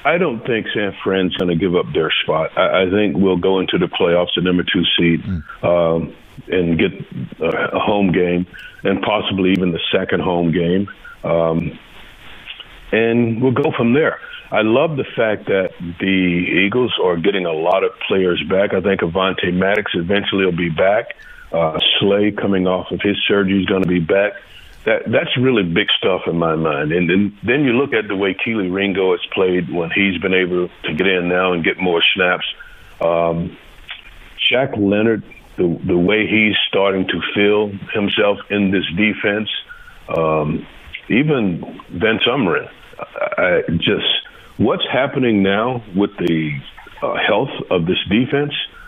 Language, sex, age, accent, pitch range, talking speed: English, male, 50-69, American, 90-105 Hz, 170 wpm